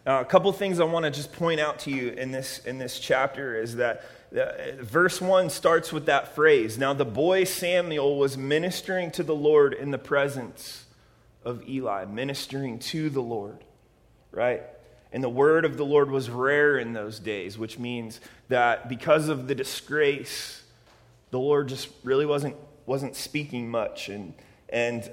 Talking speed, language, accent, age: 175 wpm, English, American, 30-49